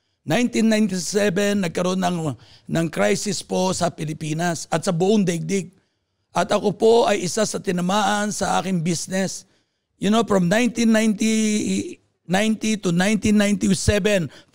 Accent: native